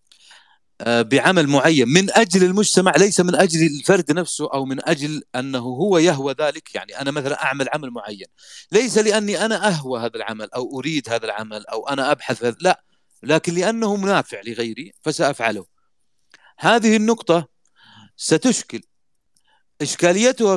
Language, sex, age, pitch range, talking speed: Arabic, male, 40-59, 130-185 Hz, 135 wpm